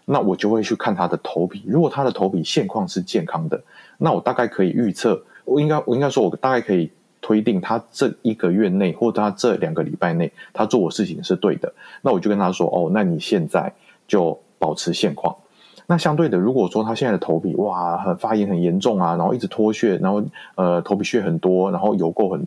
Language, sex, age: Chinese, male, 30-49